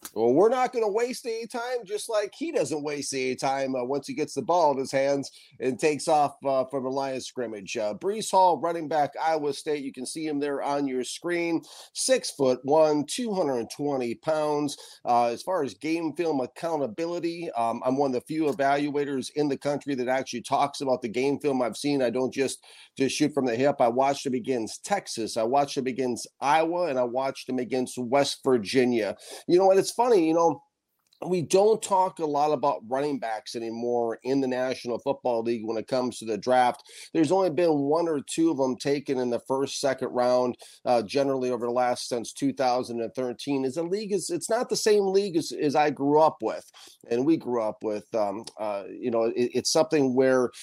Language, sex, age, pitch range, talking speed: English, male, 40-59, 125-160 Hz, 215 wpm